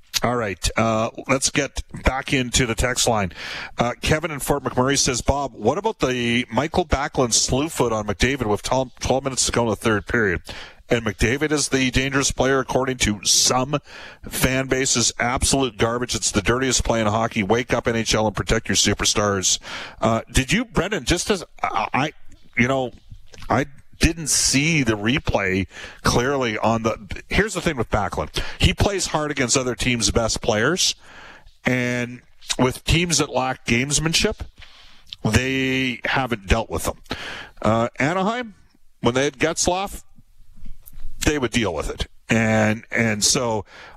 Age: 40-59